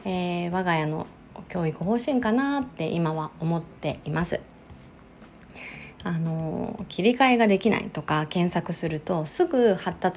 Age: 20-39